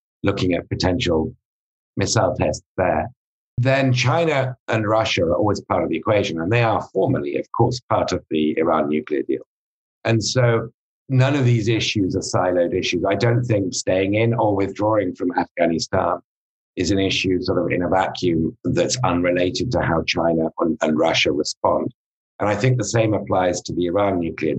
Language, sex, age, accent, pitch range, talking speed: English, male, 50-69, British, 90-115 Hz, 180 wpm